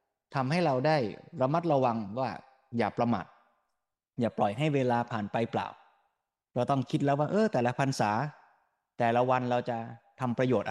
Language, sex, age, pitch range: Thai, male, 20-39, 115-150 Hz